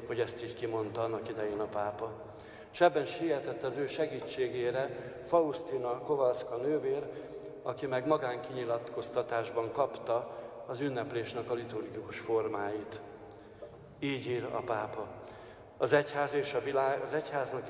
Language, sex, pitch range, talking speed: Hungarian, male, 115-150 Hz, 120 wpm